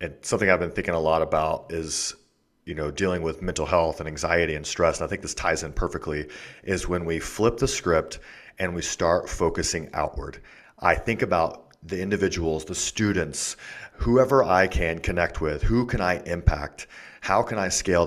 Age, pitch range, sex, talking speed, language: 30-49, 80-100 Hz, male, 190 wpm, English